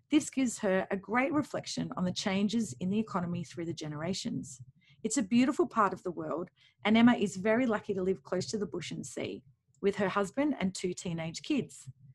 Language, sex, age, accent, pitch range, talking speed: English, female, 30-49, Australian, 170-220 Hz, 210 wpm